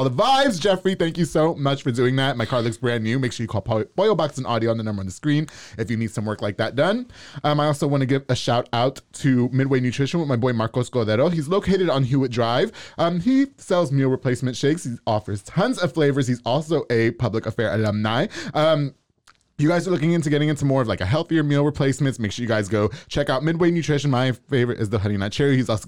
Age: 20-39